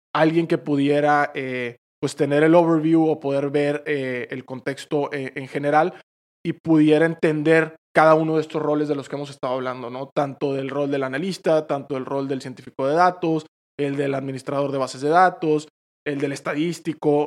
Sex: male